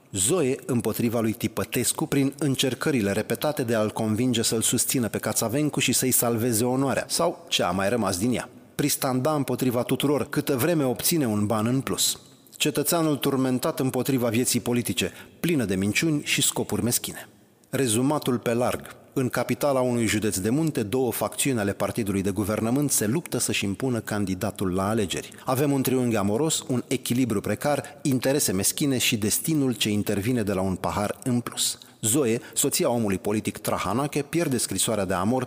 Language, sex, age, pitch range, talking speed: Romanian, male, 30-49, 105-135 Hz, 160 wpm